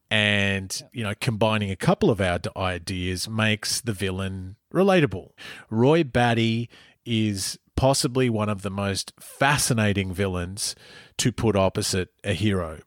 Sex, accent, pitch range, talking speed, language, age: male, Australian, 100-140 Hz, 130 wpm, English, 30-49